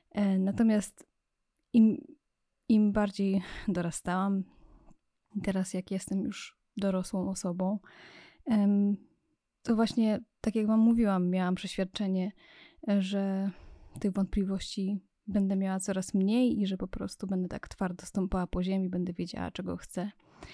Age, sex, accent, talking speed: 20-39, female, native, 115 wpm